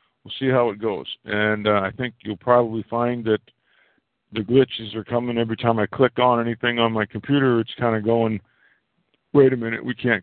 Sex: male